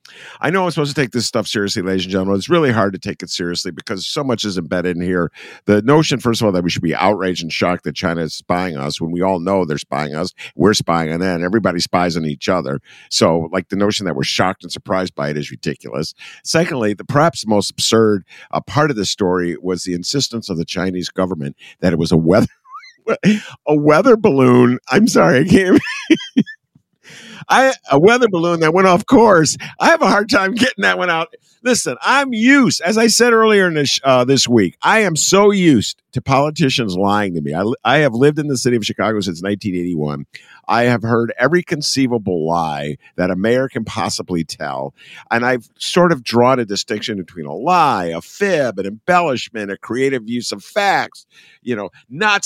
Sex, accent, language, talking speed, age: male, American, English, 210 wpm, 50-69